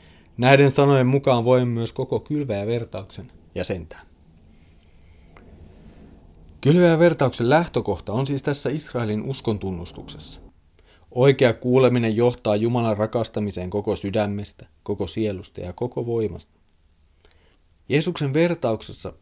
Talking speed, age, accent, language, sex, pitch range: 100 wpm, 30-49, native, Finnish, male, 90-125 Hz